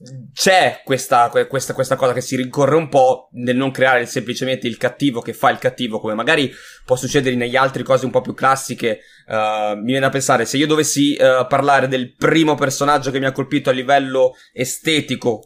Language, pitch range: Italian, 120-150 Hz